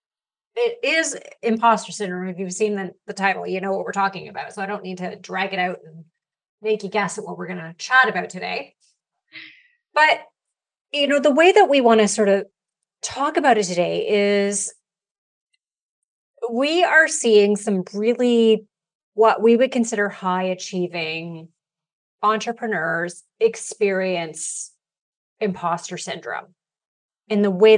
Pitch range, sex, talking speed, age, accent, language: 185-230 Hz, female, 150 wpm, 30-49, American, English